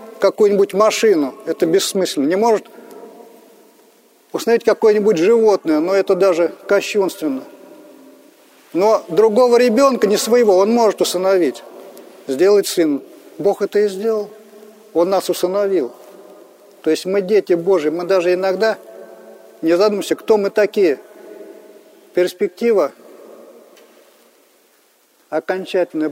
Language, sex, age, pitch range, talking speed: Russian, male, 40-59, 180-220 Hz, 105 wpm